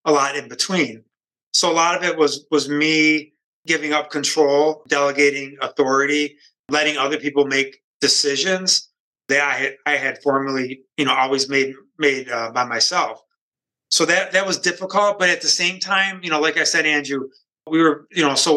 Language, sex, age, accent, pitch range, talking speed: English, male, 30-49, American, 140-160 Hz, 185 wpm